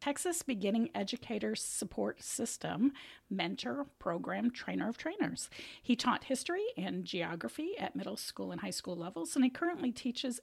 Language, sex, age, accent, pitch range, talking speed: English, female, 40-59, American, 210-285 Hz, 150 wpm